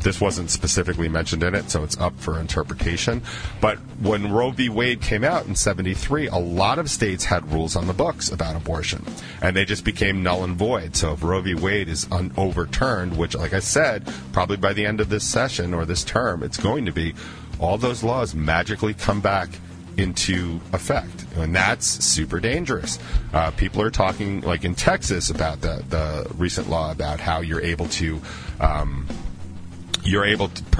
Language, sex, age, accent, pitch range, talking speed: English, male, 40-59, American, 85-105 Hz, 190 wpm